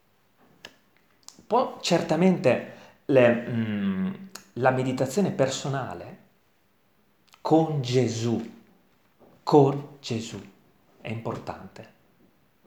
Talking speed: 60 wpm